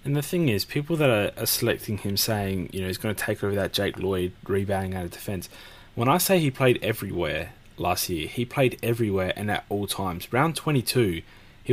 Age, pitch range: 20-39, 100-125 Hz